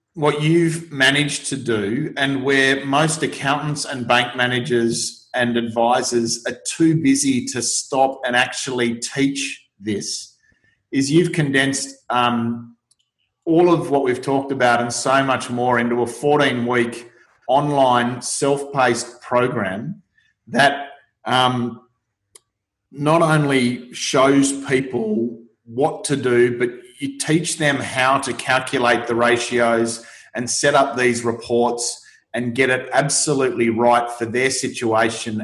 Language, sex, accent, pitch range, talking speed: English, male, Australian, 120-140 Hz, 125 wpm